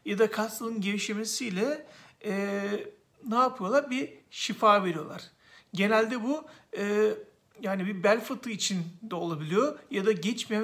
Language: Turkish